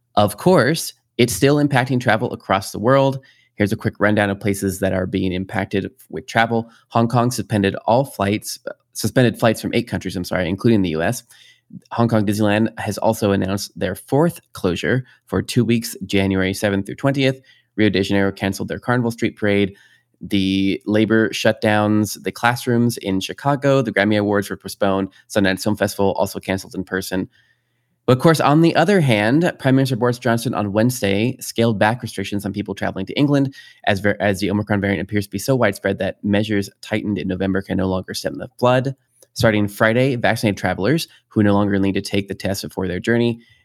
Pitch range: 100-120 Hz